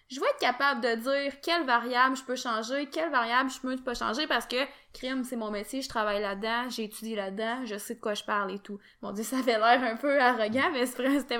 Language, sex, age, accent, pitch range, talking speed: French, female, 20-39, Canadian, 225-275 Hz, 240 wpm